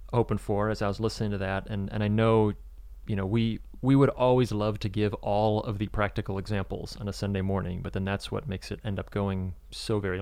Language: English